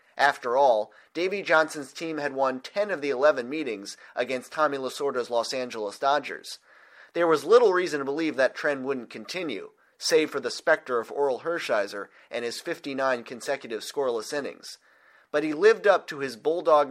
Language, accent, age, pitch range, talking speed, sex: English, American, 30-49, 125-170 Hz, 170 wpm, male